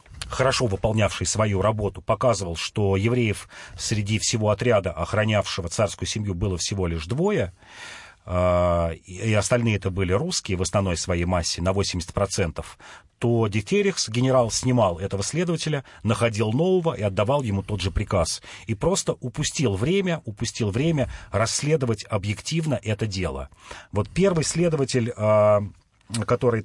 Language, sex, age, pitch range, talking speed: Russian, male, 40-59, 100-130 Hz, 130 wpm